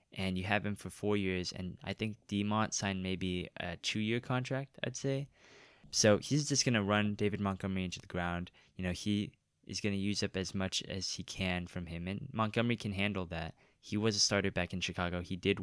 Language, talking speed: English, 225 wpm